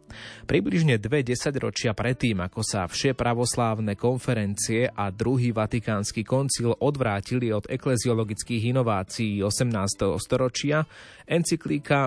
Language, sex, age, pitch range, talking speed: Slovak, male, 30-49, 105-125 Hz, 95 wpm